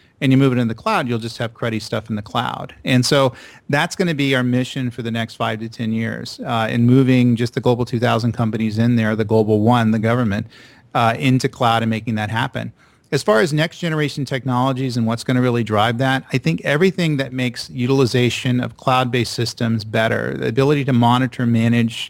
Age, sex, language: 40-59, male, English